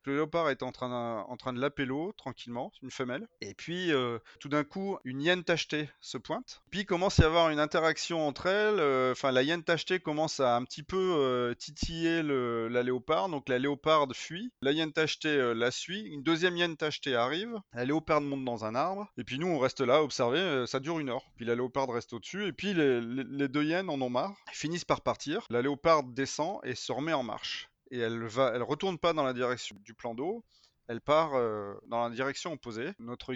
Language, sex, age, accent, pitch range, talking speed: French, male, 30-49, French, 120-160 Hz, 230 wpm